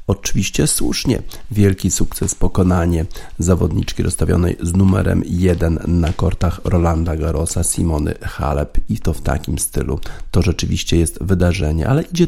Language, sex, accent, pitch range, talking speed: Polish, male, native, 85-100 Hz, 130 wpm